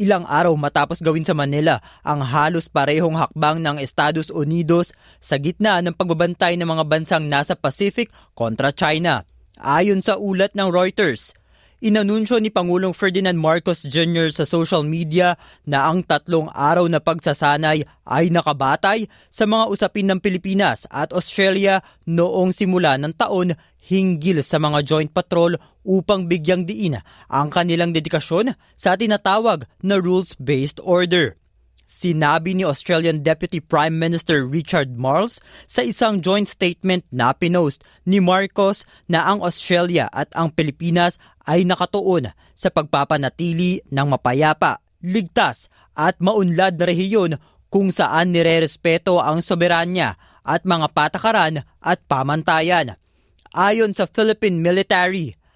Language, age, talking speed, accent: Filipino, 20-39, 130 wpm, native